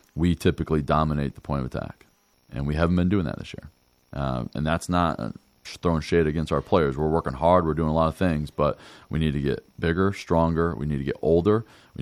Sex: male